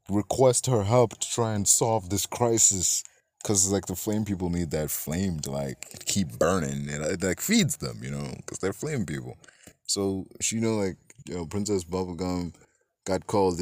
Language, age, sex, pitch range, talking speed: English, 20-39, male, 85-105 Hz, 185 wpm